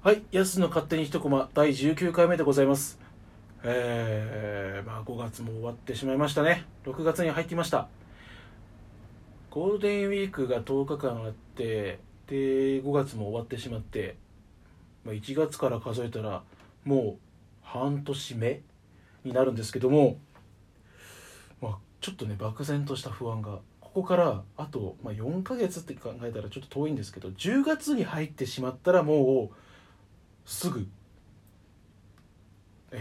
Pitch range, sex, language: 105-145 Hz, male, Japanese